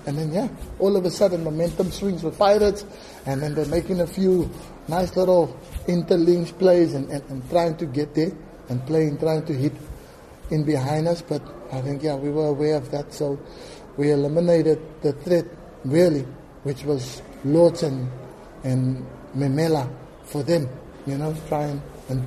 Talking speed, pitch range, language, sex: 165 wpm, 145-175 Hz, English, male